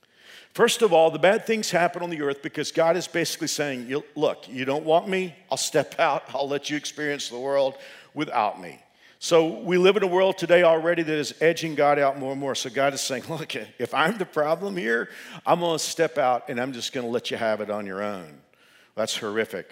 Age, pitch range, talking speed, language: 50-69, 115-170 Hz, 230 wpm, English